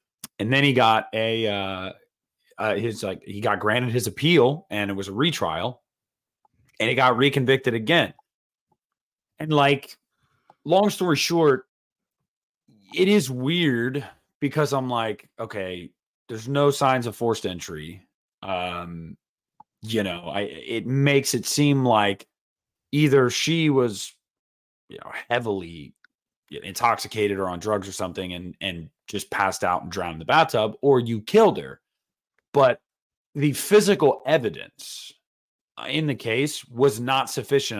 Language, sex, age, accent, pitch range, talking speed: English, male, 30-49, American, 100-140 Hz, 140 wpm